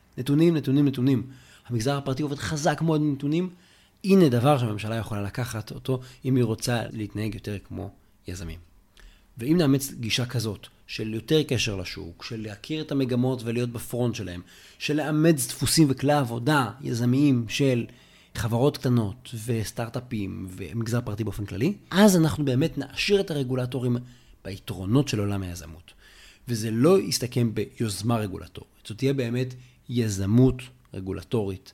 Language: Hebrew